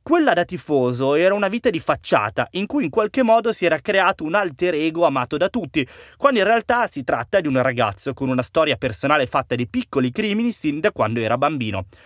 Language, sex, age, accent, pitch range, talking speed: Italian, male, 20-39, native, 125-185 Hz, 215 wpm